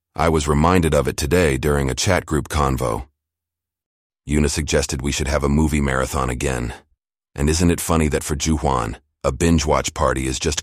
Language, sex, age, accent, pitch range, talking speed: English, male, 40-59, American, 75-90 Hz, 180 wpm